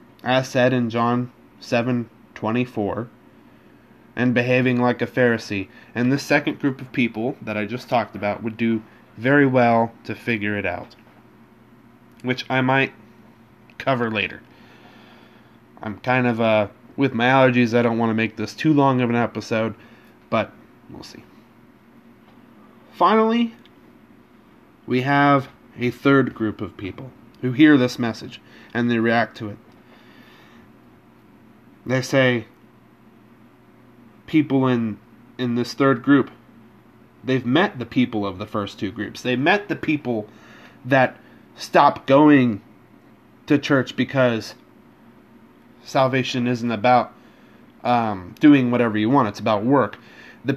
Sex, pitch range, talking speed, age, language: male, 115-130 Hz, 130 wpm, 20-39, English